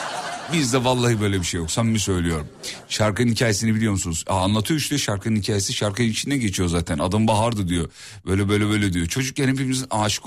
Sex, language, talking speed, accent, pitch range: male, Turkish, 170 wpm, native, 95-135 Hz